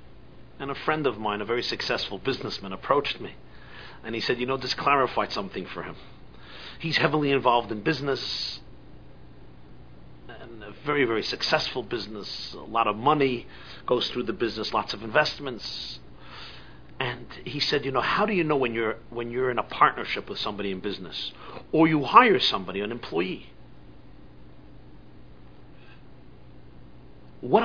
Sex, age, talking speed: male, 50-69, 150 wpm